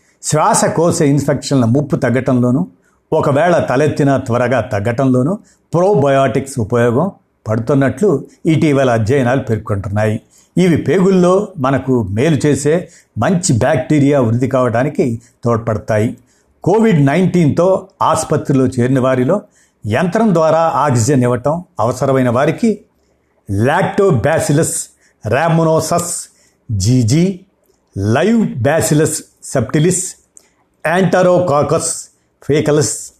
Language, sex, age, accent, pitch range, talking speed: Telugu, male, 60-79, native, 125-165 Hz, 80 wpm